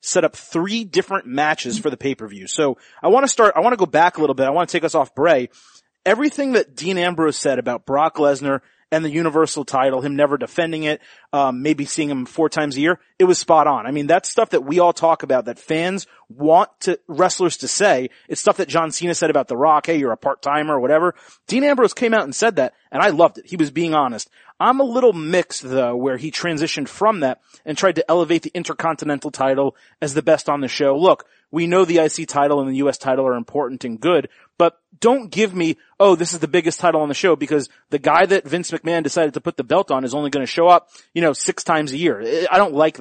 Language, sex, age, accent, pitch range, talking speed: English, male, 30-49, American, 145-175 Hz, 250 wpm